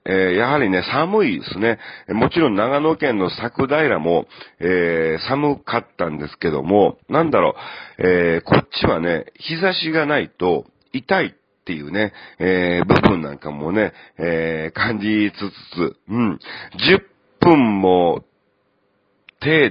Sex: male